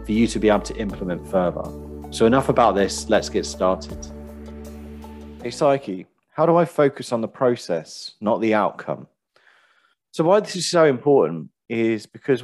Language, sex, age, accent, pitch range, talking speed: English, male, 30-49, British, 85-115 Hz, 170 wpm